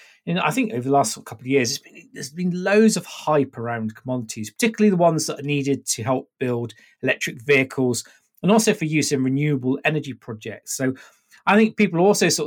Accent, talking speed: British, 195 wpm